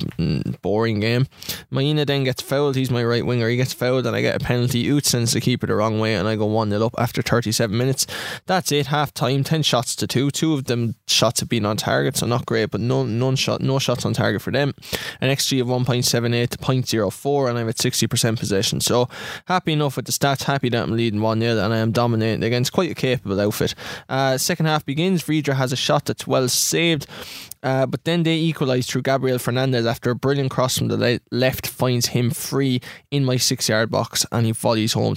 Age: 20-39